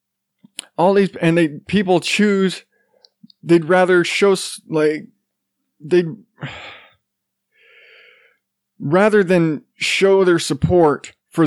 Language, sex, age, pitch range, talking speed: English, male, 20-39, 155-190 Hz, 90 wpm